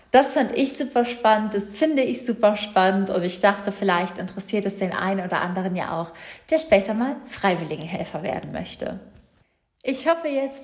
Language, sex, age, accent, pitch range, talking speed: German, female, 20-39, German, 195-230 Hz, 175 wpm